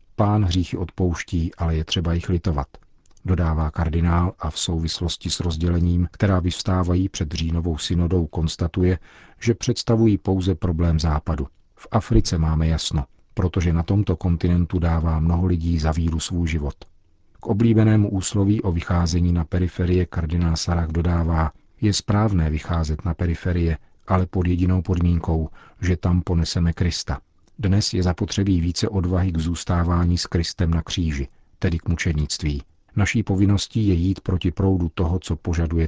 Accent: native